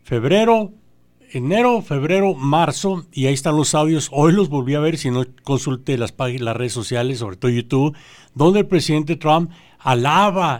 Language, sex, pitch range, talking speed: English, male, 125-165 Hz, 170 wpm